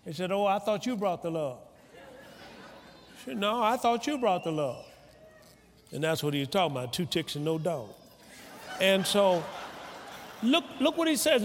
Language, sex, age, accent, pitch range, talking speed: English, male, 50-69, American, 150-205 Hz, 195 wpm